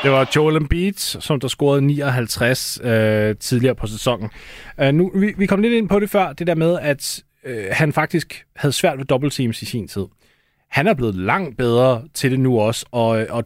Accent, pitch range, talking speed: native, 120-145 Hz, 210 wpm